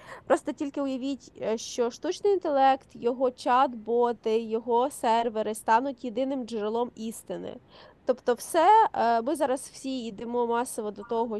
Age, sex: 20-39, female